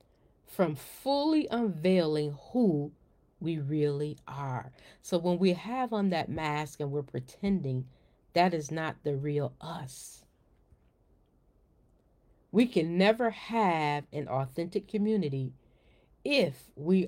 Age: 40-59